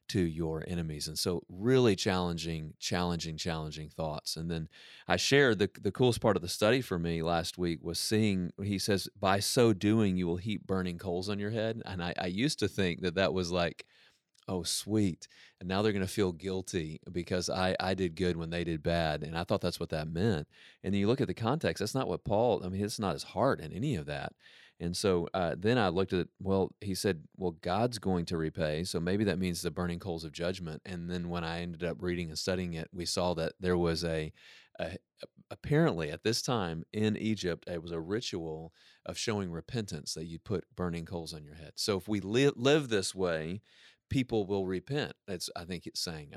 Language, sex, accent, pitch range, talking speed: English, male, American, 85-105 Hz, 225 wpm